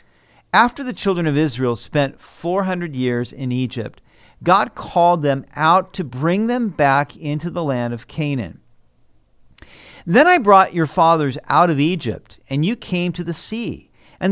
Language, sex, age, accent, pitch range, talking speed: English, male, 50-69, American, 125-180 Hz, 160 wpm